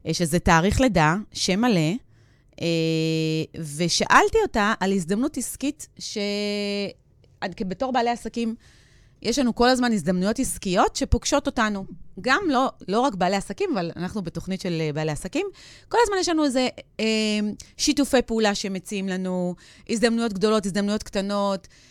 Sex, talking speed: female, 130 wpm